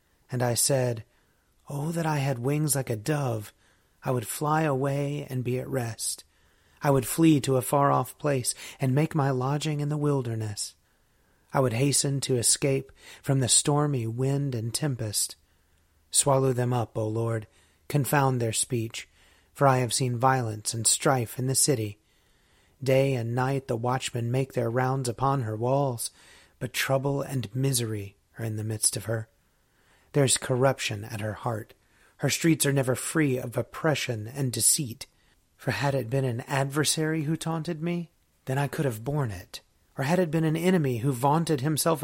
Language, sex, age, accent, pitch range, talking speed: English, male, 30-49, American, 115-145 Hz, 175 wpm